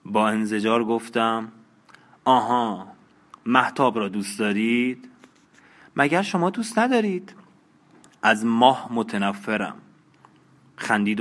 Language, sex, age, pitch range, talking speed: Persian, male, 30-49, 110-140 Hz, 85 wpm